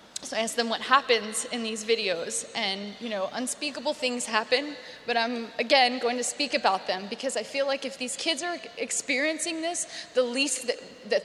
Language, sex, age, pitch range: English, female, 20-39, 210-255 Hz